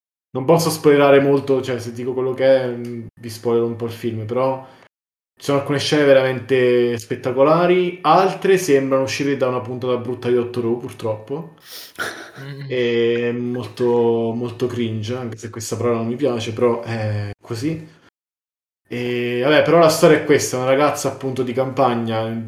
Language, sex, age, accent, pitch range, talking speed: Italian, male, 20-39, native, 115-135 Hz, 165 wpm